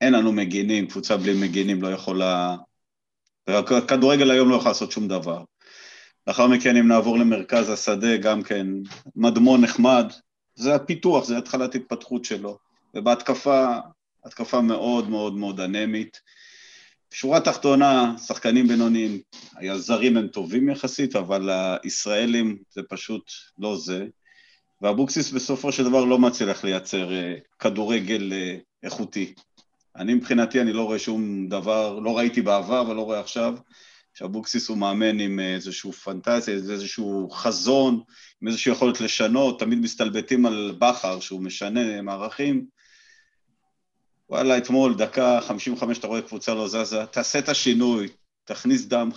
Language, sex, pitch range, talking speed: Hebrew, male, 100-125 Hz, 130 wpm